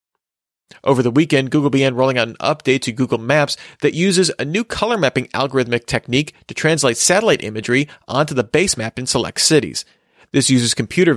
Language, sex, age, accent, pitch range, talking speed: English, male, 40-59, American, 120-150 Hz, 185 wpm